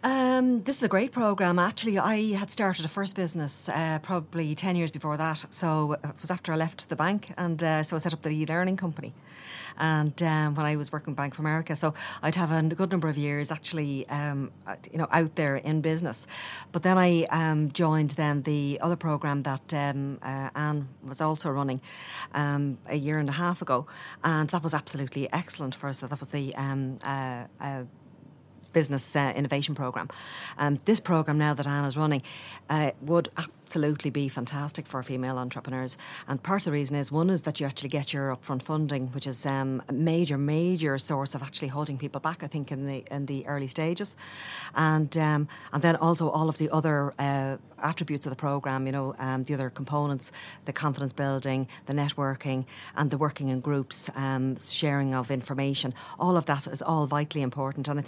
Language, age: English, 40-59